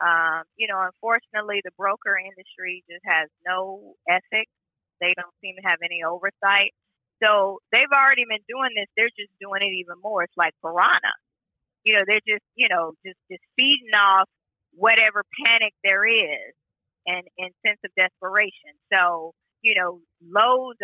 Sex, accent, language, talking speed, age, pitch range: female, American, English, 160 wpm, 30-49, 190-245 Hz